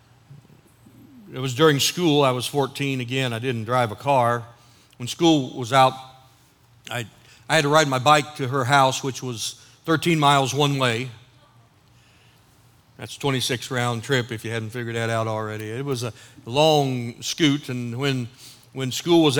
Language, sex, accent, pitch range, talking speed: English, male, American, 120-145 Hz, 165 wpm